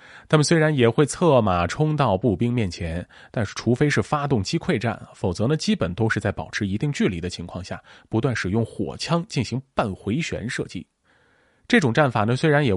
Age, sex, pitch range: 20-39, male, 105-155 Hz